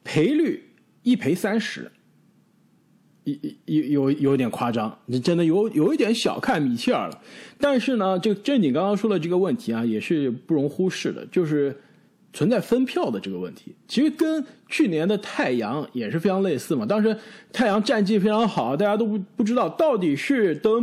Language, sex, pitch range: Chinese, male, 165-250 Hz